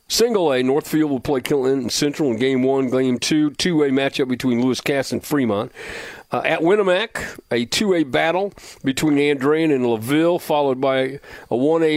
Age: 50-69